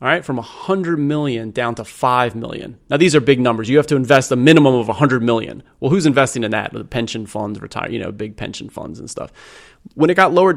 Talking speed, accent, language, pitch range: 245 wpm, American, English, 115-150 Hz